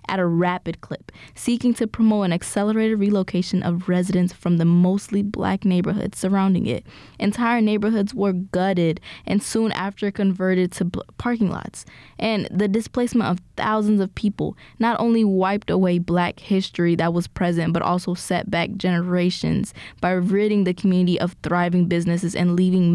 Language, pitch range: English, 175-205 Hz